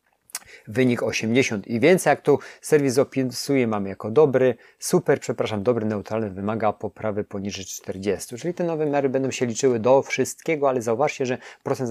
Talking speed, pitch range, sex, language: 160 wpm, 110-130 Hz, male, Polish